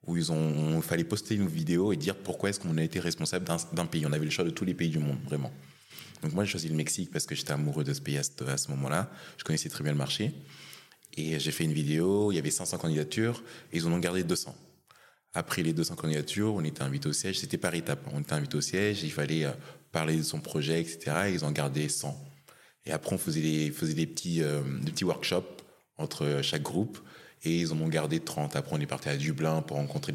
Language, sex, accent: French, male, French